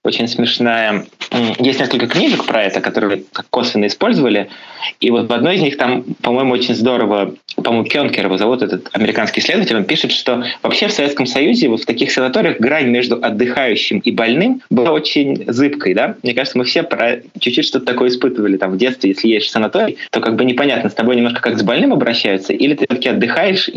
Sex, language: male, Russian